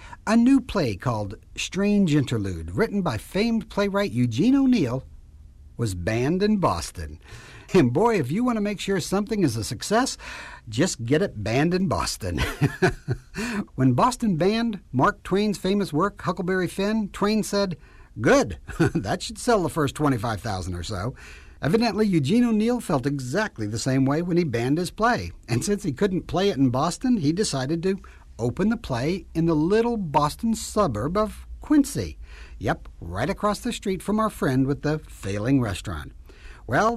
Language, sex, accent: English, male, American